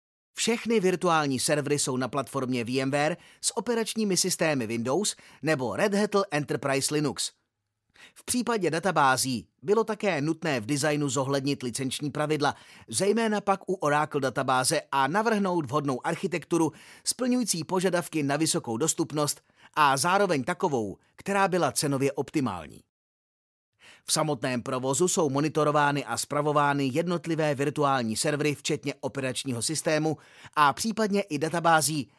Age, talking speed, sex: 30-49, 120 wpm, male